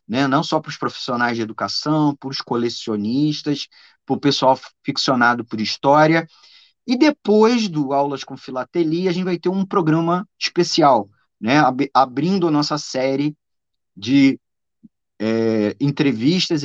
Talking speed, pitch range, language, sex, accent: 135 wpm, 135-170 Hz, Portuguese, male, Brazilian